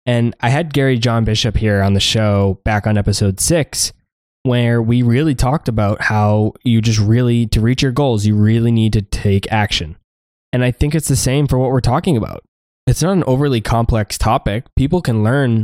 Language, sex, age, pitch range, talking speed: English, male, 10-29, 105-130 Hz, 205 wpm